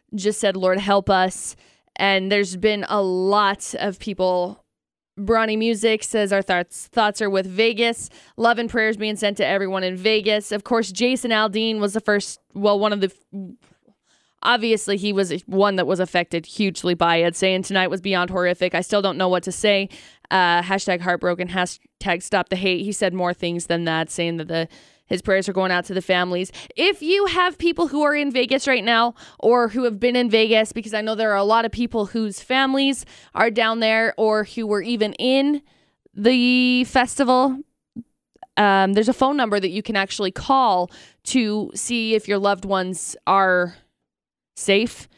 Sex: female